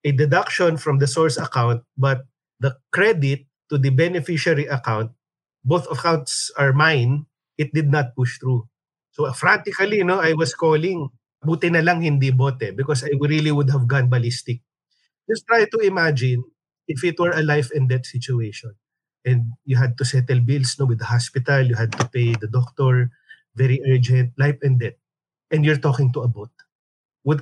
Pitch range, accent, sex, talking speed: 125-150 Hz, native, male, 175 wpm